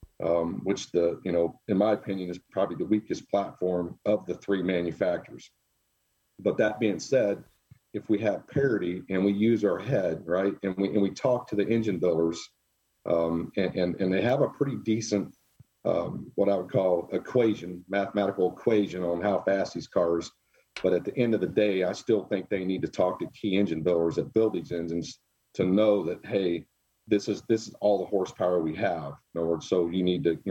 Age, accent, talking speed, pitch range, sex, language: 50-69, American, 205 wpm, 85-105 Hz, male, English